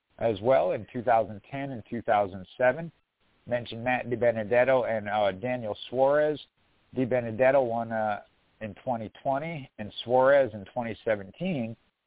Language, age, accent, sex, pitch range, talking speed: English, 50-69, American, male, 115-135 Hz, 110 wpm